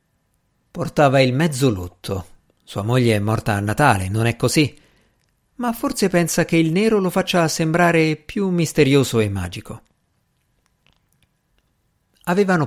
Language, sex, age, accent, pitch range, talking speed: Italian, male, 50-69, native, 115-155 Hz, 130 wpm